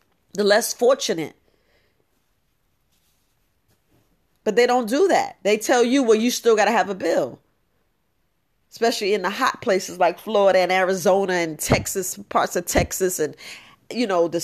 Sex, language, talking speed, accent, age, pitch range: female, English, 155 wpm, American, 40-59, 195-245 Hz